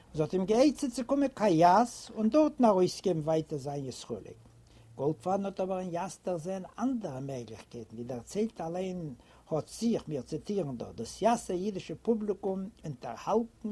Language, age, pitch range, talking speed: English, 60-79, 155-220 Hz, 160 wpm